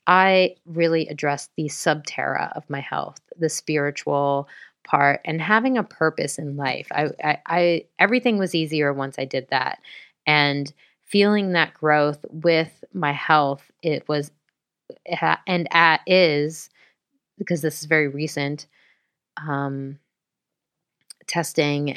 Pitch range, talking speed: 145-175 Hz, 125 wpm